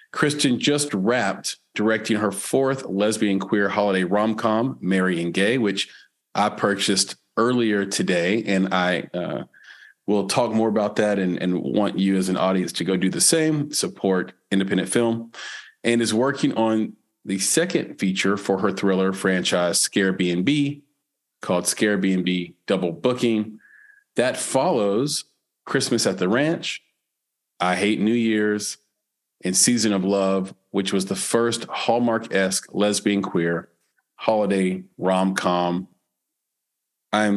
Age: 40-59